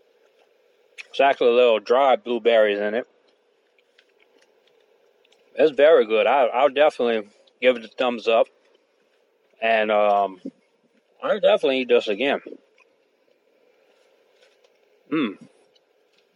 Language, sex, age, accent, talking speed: English, male, 30-49, American, 90 wpm